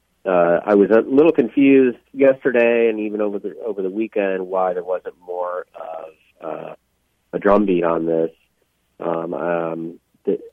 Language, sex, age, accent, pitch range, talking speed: English, male, 40-59, American, 85-100 Hz, 160 wpm